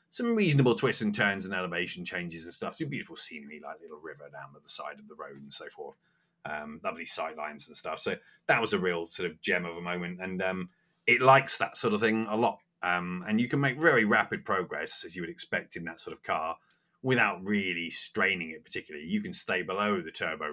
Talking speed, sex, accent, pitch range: 235 wpm, male, British, 90-125 Hz